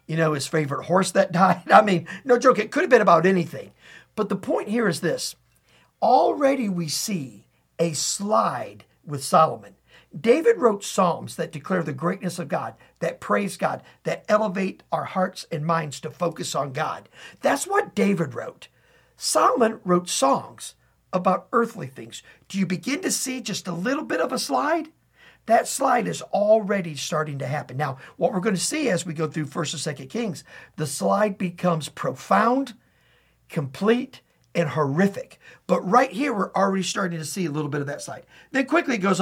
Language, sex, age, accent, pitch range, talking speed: English, male, 50-69, American, 165-225 Hz, 185 wpm